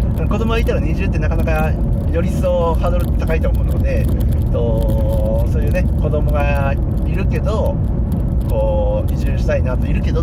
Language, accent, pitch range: Japanese, native, 75-120 Hz